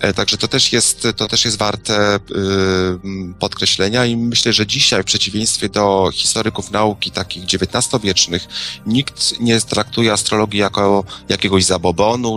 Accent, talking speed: native, 135 wpm